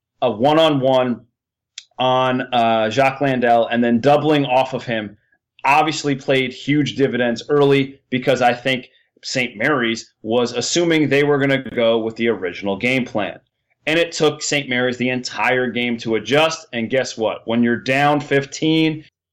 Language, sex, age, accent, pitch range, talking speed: English, male, 30-49, American, 120-140 Hz, 160 wpm